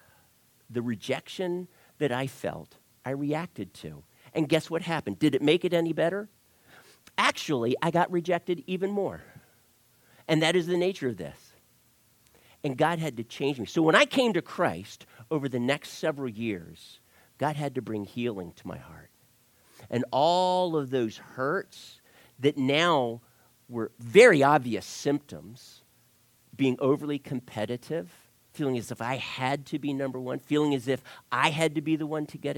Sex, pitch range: male, 115-160 Hz